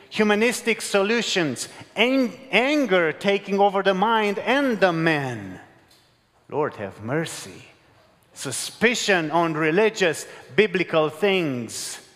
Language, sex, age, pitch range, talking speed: English, male, 40-59, 165-210 Hz, 90 wpm